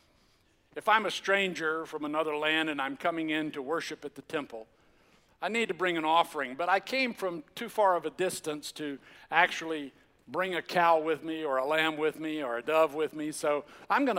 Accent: American